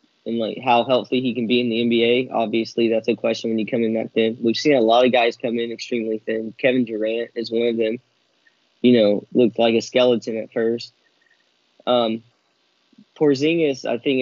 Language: English